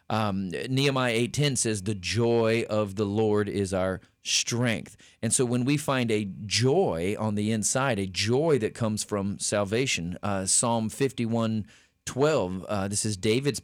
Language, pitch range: English, 105-125 Hz